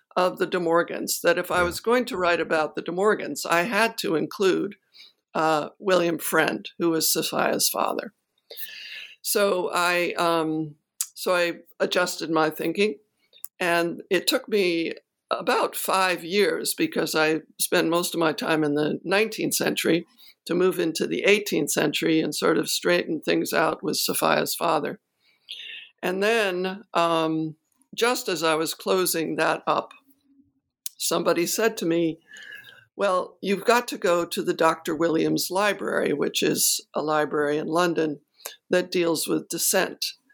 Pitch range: 160-225 Hz